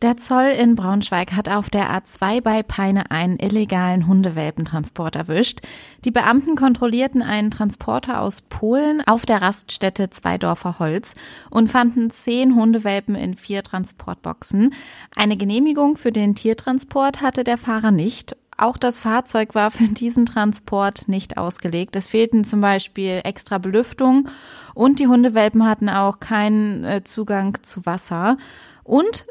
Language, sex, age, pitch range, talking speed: German, female, 20-39, 190-235 Hz, 135 wpm